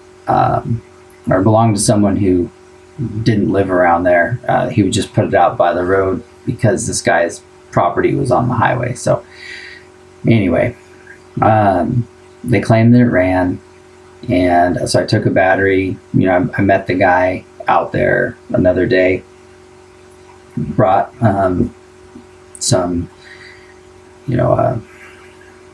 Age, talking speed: 20-39, 140 wpm